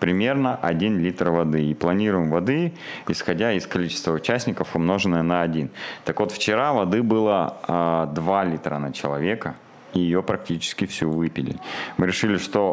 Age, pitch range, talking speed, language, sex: 30-49, 85-100 Hz, 145 wpm, Russian, male